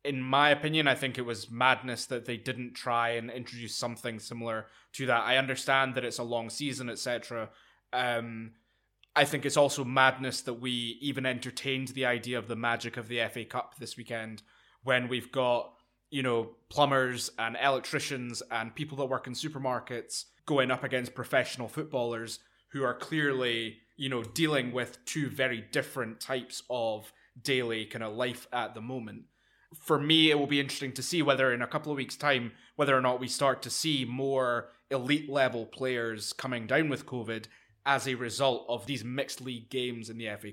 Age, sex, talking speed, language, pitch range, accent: 20-39, male, 185 wpm, English, 115-135 Hz, British